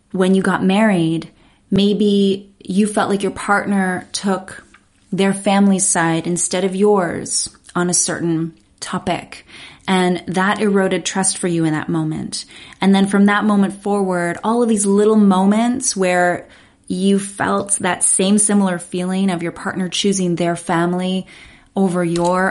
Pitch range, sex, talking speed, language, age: 180-210 Hz, female, 150 wpm, English, 20-39